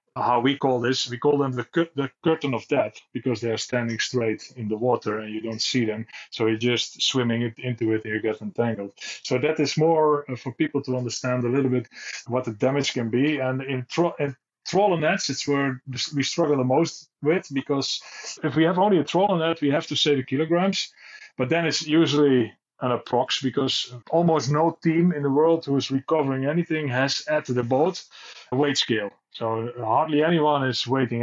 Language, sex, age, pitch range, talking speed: English, male, 30-49, 125-160 Hz, 210 wpm